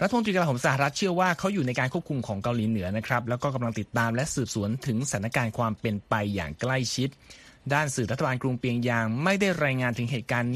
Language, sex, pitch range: Thai, male, 115-150 Hz